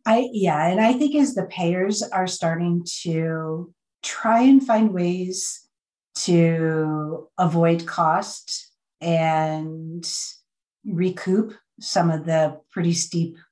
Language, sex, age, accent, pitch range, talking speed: English, female, 50-69, American, 160-185 Hz, 110 wpm